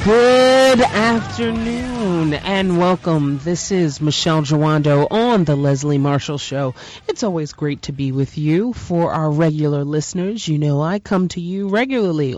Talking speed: 150 wpm